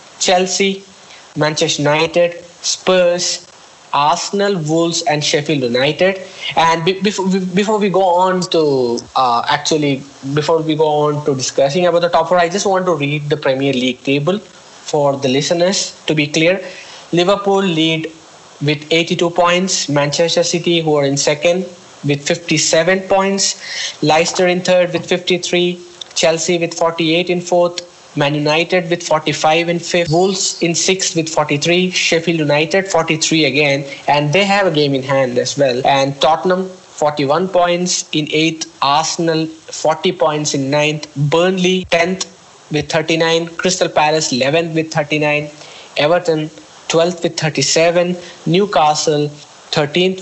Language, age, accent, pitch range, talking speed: English, 20-39, Indian, 150-175 Hz, 140 wpm